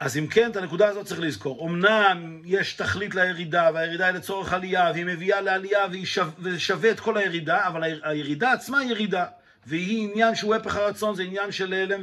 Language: Hebrew